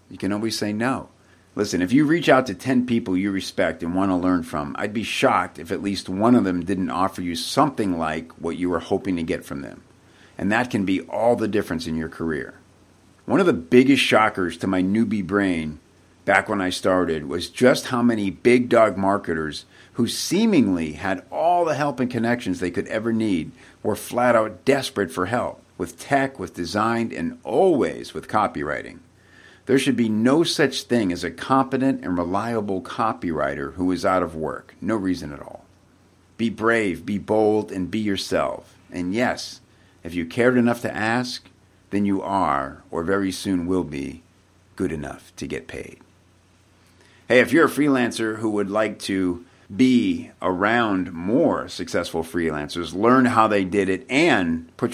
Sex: male